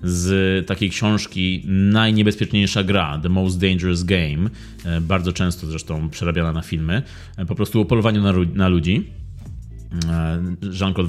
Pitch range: 90-125 Hz